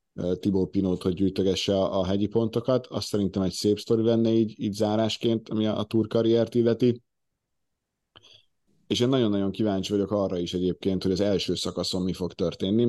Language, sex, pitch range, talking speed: Hungarian, male, 95-110 Hz, 170 wpm